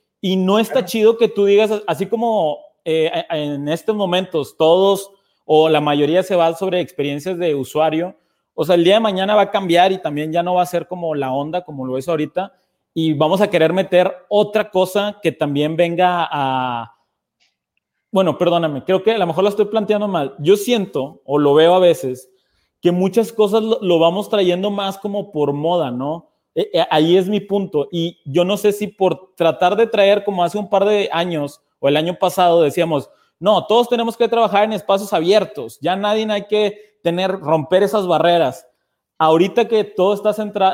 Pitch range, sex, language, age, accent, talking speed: 160-200 Hz, male, Spanish, 30-49, Mexican, 195 wpm